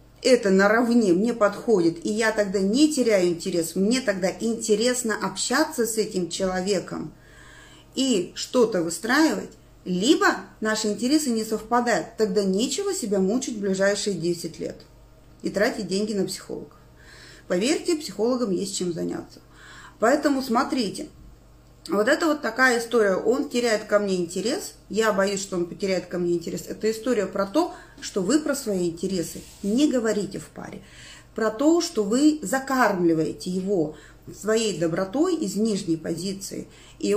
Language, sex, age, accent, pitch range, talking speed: Russian, female, 30-49, native, 190-250 Hz, 140 wpm